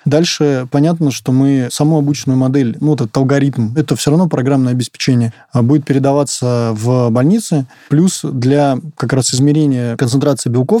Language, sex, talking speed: Russian, male, 150 wpm